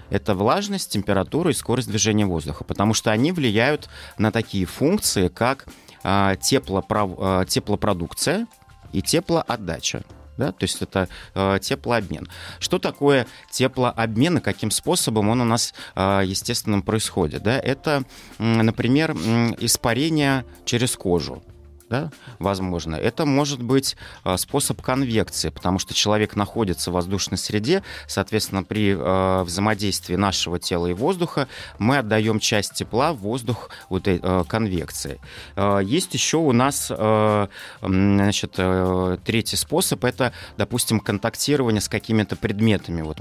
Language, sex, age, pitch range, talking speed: Russian, male, 30-49, 95-120 Hz, 110 wpm